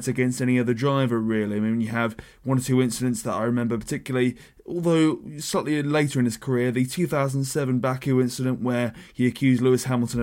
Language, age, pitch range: English, 20-39, 120-140 Hz